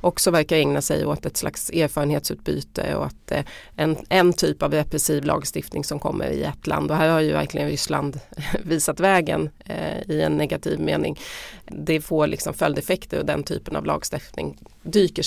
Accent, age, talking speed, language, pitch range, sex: native, 30-49, 170 wpm, Swedish, 145-170 Hz, female